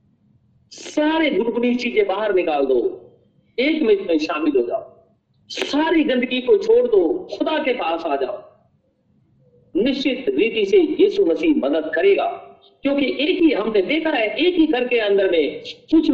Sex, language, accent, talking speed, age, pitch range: male, Hindi, native, 155 wpm, 50-69, 255-370 Hz